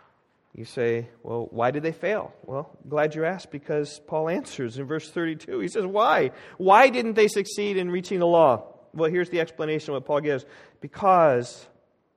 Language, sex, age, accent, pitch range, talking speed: English, male, 40-59, American, 110-150 Hz, 185 wpm